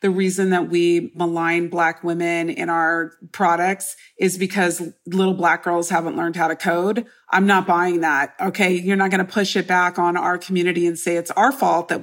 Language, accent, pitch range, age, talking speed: English, American, 170-195 Hz, 40-59, 205 wpm